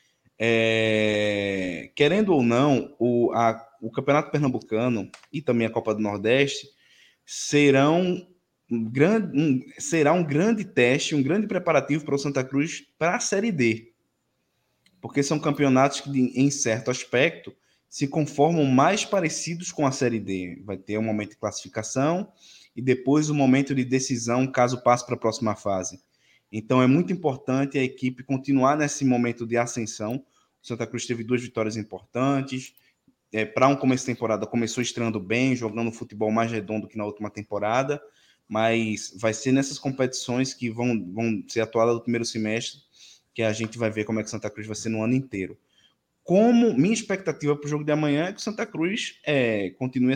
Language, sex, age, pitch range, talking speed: Portuguese, male, 20-39, 110-140 Hz, 175 wpm